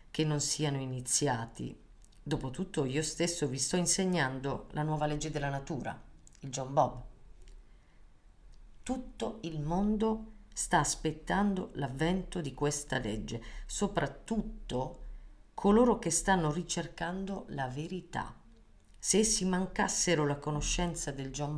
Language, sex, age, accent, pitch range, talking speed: Italian, female, 40-59, native, 130-175 Hz, 115 wpm